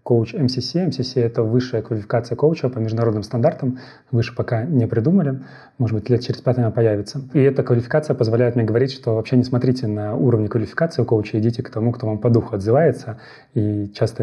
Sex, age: male, 30-49